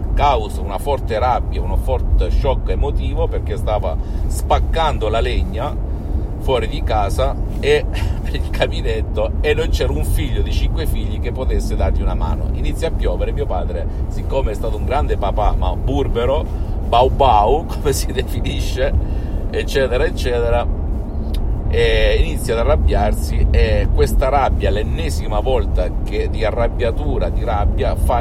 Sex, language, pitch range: male, Italian, 75-100 Hz